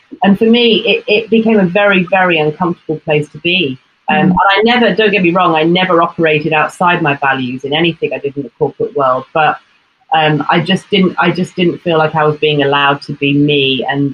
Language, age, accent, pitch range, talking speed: English, 30-49, British, 150-210 Hz, 225 wpm